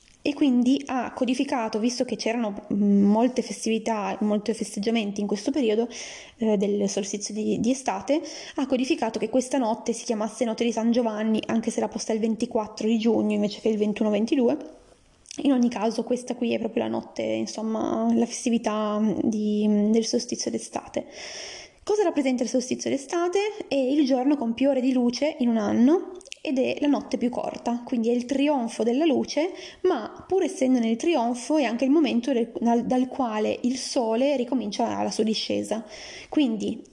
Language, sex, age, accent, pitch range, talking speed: Italian, female, 20-39, native, 215-265 Hz, 175 wpm